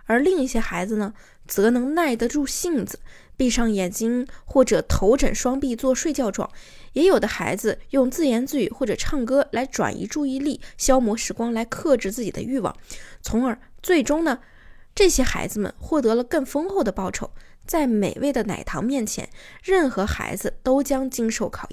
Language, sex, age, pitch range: Chinese, female, 20-39, 215-285 Hz